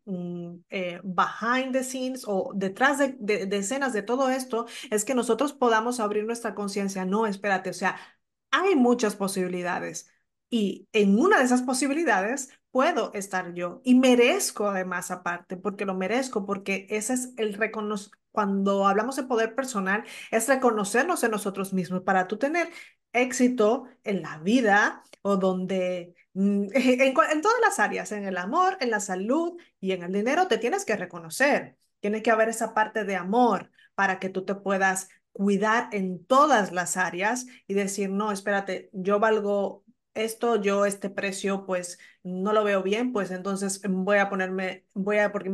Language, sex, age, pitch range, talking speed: Spanish, female, 30-49, 190-240 Hz, 170 wpm